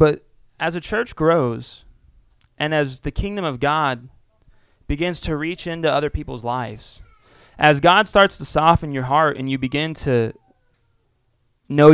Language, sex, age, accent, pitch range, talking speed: English, male, 20-39, American, 120-155 Hz, 150 wpm